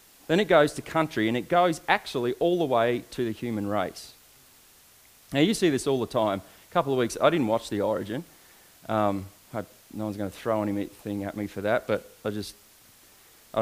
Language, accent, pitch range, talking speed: English, Australian, 105-160 Hz, 215 wpm